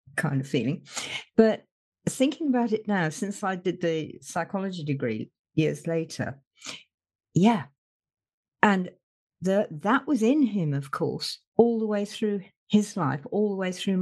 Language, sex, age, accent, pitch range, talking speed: English, female, 50-69, British, 170-240 Hz, 150 wpm